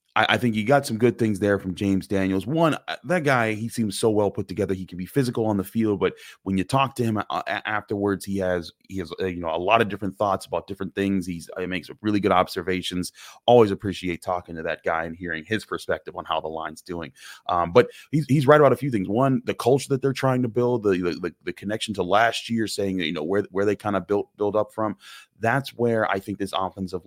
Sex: male